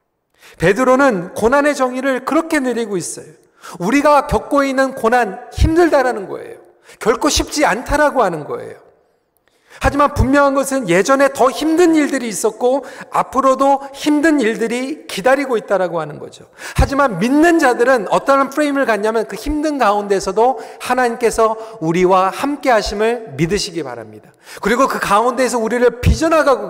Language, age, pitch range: Korean, 40-59, 195-285 Hz